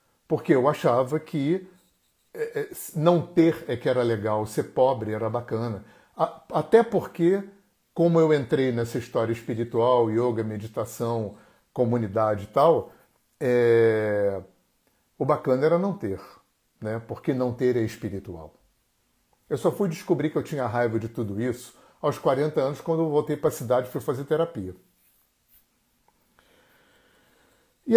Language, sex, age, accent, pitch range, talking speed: Portuguese, male, 50-69, Brazilian, 115-170 Hz, 135 wpm